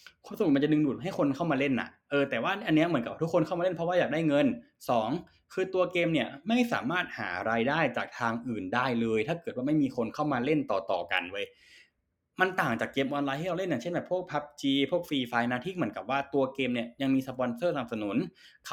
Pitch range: 120-185 Hz